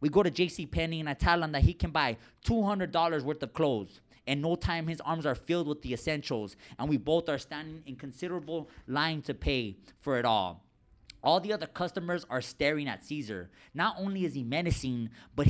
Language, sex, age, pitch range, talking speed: English, male, 20-39, 135-180 Hz, 205 wpm